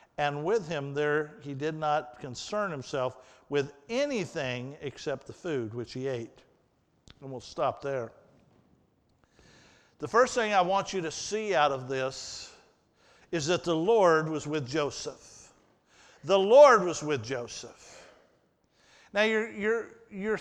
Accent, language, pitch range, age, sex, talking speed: American, English, 155-240 Hz, 50-69, male, 140 wpm